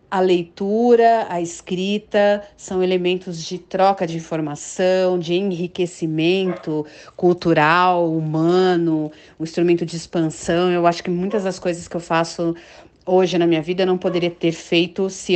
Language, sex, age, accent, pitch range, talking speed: Portuguese, female, 40-59, Brazilian, 170-200 Hz, 140 wpm